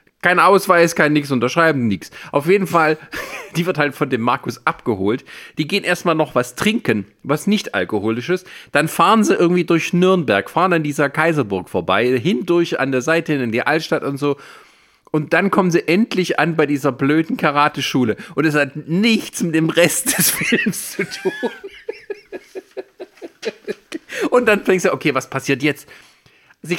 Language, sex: German, male